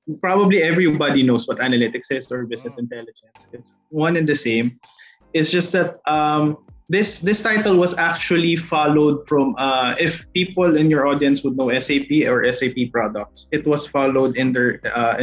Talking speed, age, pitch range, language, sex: 170 wpm, 20-39, 130-165 Hz, Filipino, male